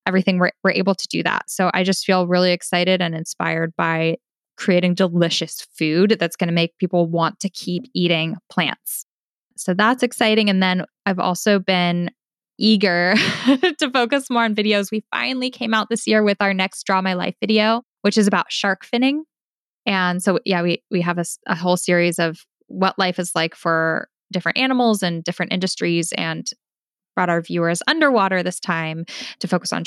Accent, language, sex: American, English, female